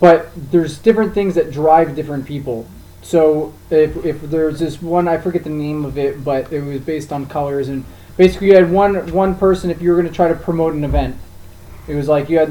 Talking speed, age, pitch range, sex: 225 wpm, 20-39, 150-180 Hz, male